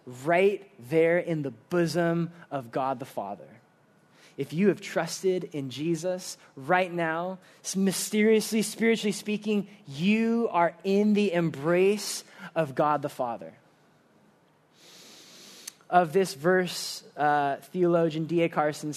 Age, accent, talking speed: 20-39, American, 115 wpm